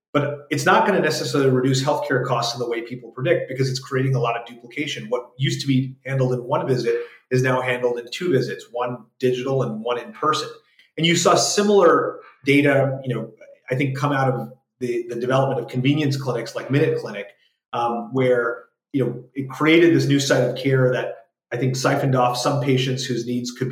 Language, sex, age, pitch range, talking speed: English, male, 30-49, 125-145 Hz, 205 wpm